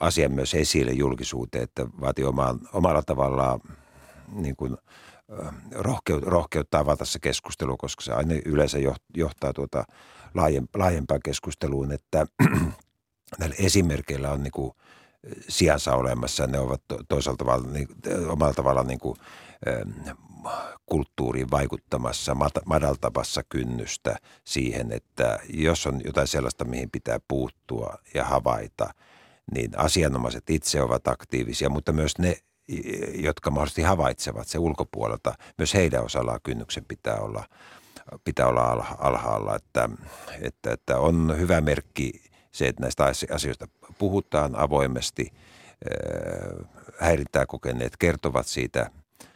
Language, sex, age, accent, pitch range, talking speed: Finnish, male, 50-69, native, 65-80 Hz, 110 wpm